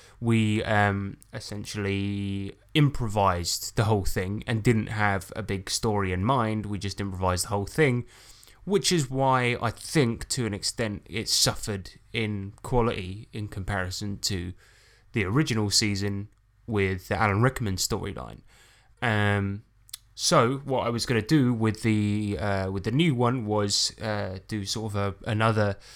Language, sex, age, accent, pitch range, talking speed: English, male, 10-29, British, 100-120 Hz, 155 wpm